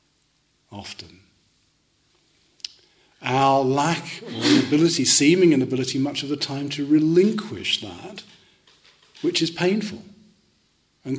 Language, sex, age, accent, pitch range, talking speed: English, male, 40-59, British, 120-155 Hz, 95 wpm